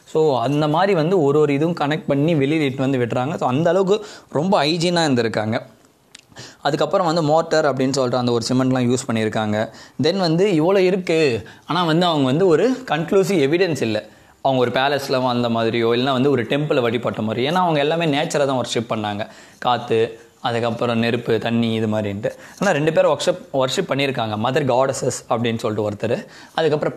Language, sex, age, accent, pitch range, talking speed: Tamil, male, 20-39, native, 115-150 Hz, 170 wpm